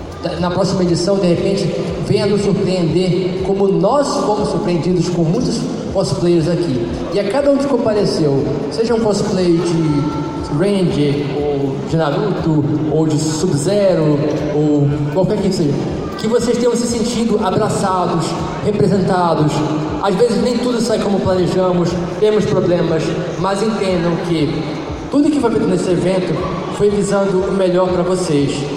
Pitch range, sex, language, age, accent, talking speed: 160-195 Hz, male, Portuguese, 20-39, Brazilian, 140 wpm